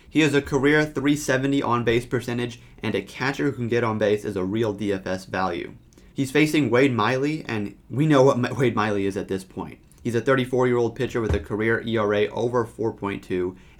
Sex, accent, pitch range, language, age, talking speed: male, American, 100-125 Hz, English, 30-49, 195 wpm